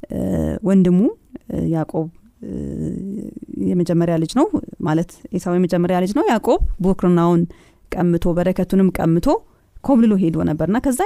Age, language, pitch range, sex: 30-49, Amharic, 170-215 Hz, female